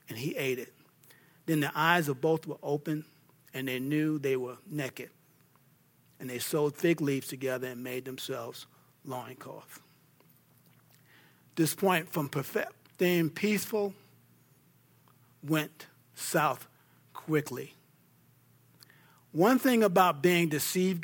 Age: 50-69